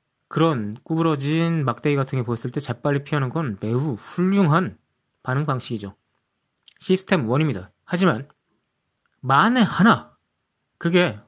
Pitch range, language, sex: 125-175 Hz, Korean, male